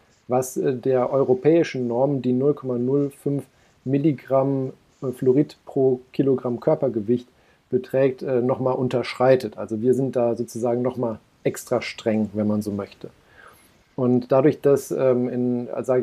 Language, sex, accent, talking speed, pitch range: German, male, German, 110 wpm, 125-145 Hz